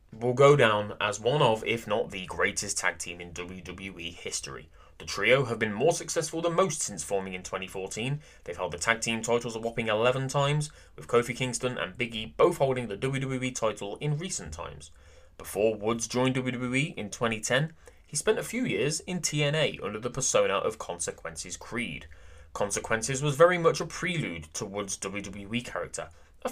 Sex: male